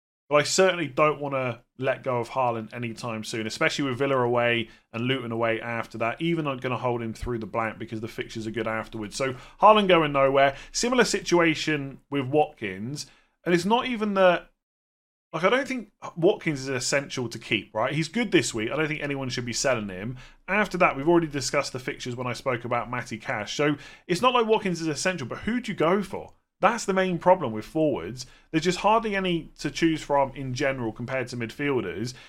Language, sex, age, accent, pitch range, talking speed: English, male, 30-49, British, 120-165 Hz, 215 wpm